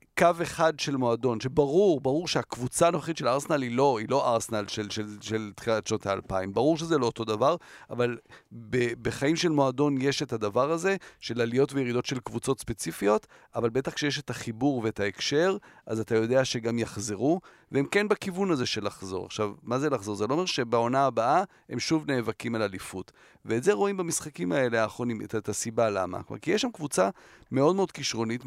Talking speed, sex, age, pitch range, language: 185 wpm, male, 40-59, 110-155 Hz, Hebrew